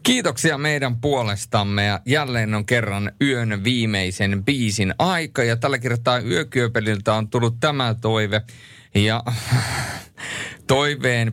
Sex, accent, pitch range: male, native, 100-130 Hz